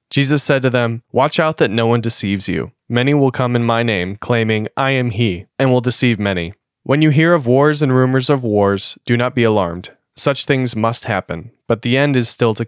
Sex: male